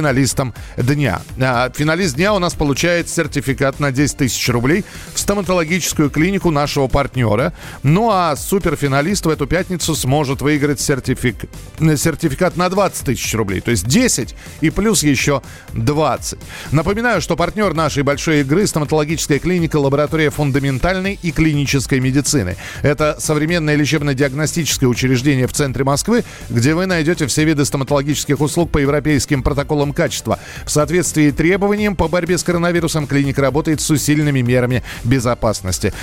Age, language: 40-59, Russian